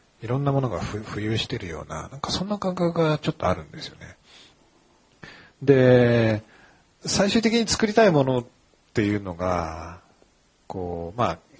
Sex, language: male, Japanese